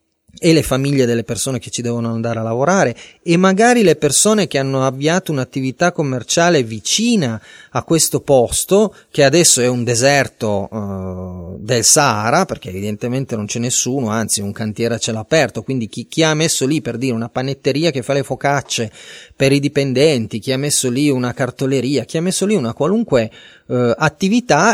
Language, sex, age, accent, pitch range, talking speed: Italian, male, 30-49, native, 115-150 Hz, 180 wpm